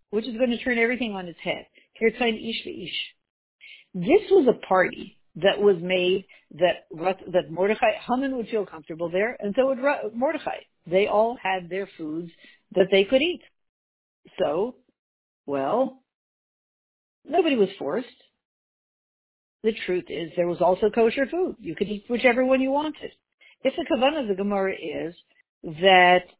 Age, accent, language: 50-69, American, English